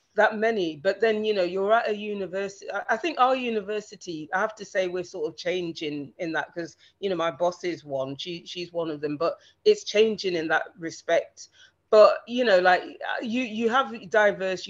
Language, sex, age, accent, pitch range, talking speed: English, female, 30-49, British, 170-215 Hz, 205 wpm